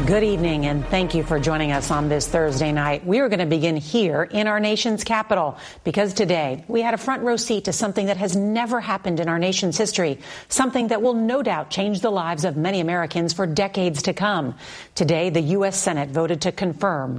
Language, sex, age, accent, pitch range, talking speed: English, female, 50-69, American, 155-205 Hz, 215 wpm